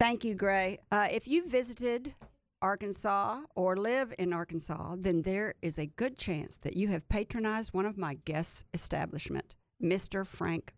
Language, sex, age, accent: English, female, 50-69, American